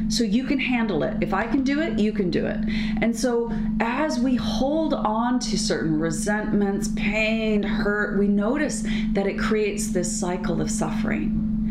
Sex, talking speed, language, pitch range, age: female, 175 wpm, English, 185-225 Hz, 30-49